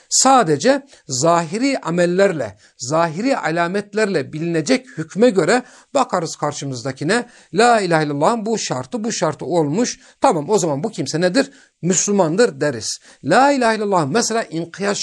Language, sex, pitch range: Turkish, male, 150-210 Hz